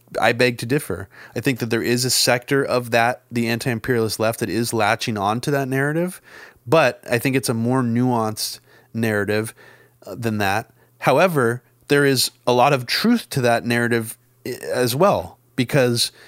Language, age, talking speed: English, 30-49, 170 wpm